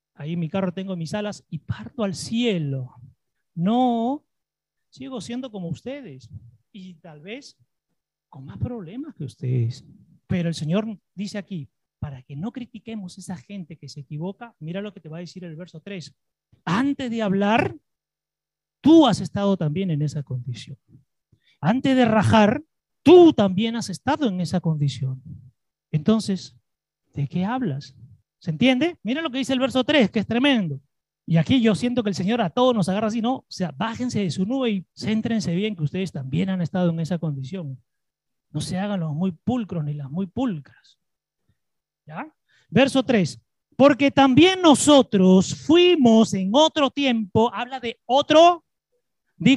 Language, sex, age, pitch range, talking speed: Spanish, male, 30-49, 160-250 Hz, 165 wpm